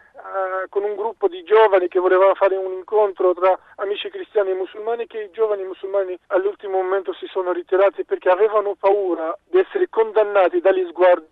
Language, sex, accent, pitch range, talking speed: Italian, male, native, 185-245 Hz, 175 wpm